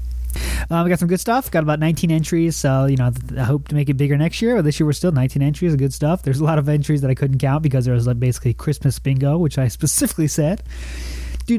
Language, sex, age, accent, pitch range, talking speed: English, male, 20-39, American, 130-160 Hz, 260 wpm